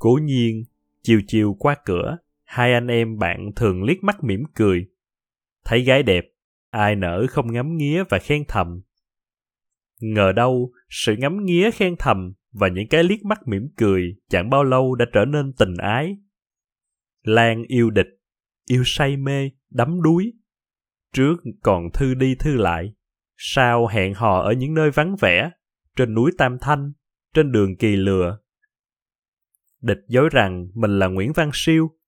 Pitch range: 100-140 Hz